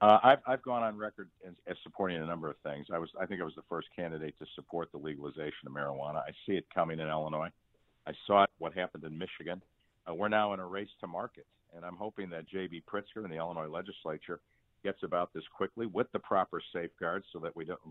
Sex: male